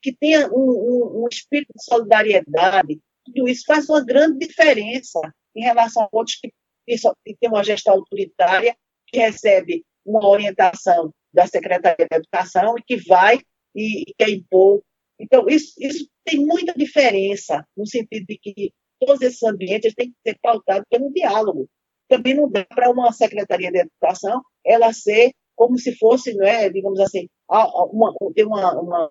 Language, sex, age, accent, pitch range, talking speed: Portuguese, female, 40-59, Brazilian, 185-245 Hz, 160 wpm